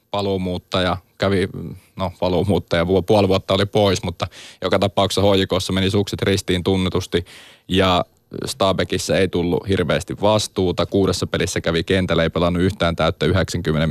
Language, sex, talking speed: Finnish, male, 130 wpm